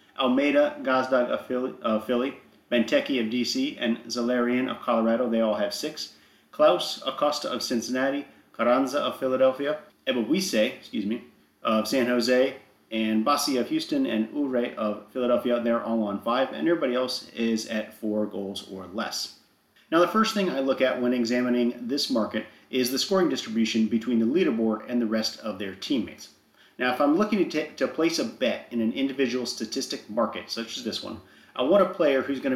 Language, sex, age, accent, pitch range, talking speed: English, male, 40-59, American, 110-140 Hz, 180 wpm